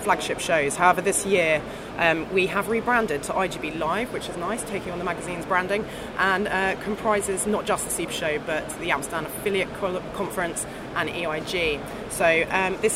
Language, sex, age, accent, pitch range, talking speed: English, female, 20-39, British, 160-205 Hz, 175 wpm